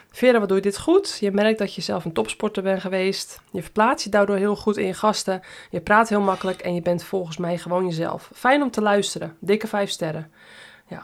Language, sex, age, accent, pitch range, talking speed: Dutch, female, 20-39, Dutch, 185-235 Hz, 235 wpm